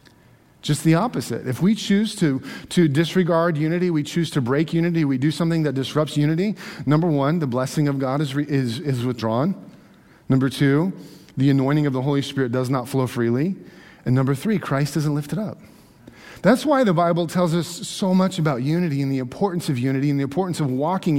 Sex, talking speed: male, 200 wpm